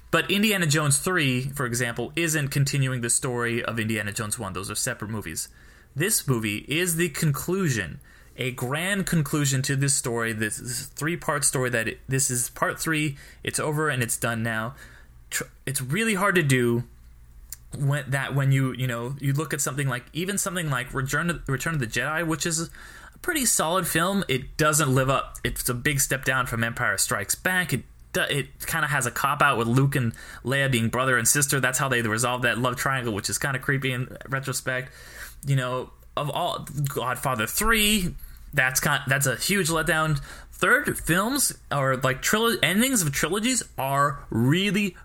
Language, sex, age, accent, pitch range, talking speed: English, male, 20-39, American, 120-160 Hz, 180 wpm